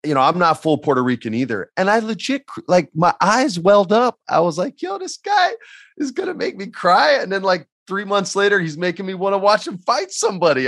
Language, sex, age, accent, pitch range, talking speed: English, male, 30-49, American, 115-170 Hz, 240 wpm